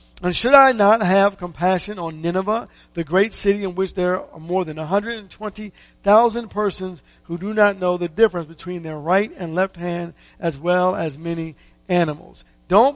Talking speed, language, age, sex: 170 wpm, English, 50-69, male